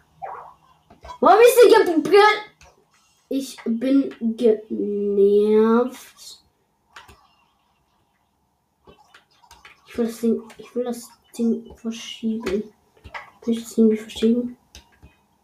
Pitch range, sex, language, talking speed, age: 225-320 Hz, female, German, 80 wpm, 20-39